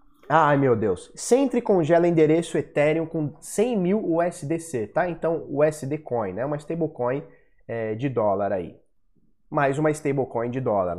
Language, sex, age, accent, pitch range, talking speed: Portuguese, male, 20-39, Brazilian, 130-180 Hz, 145 wpm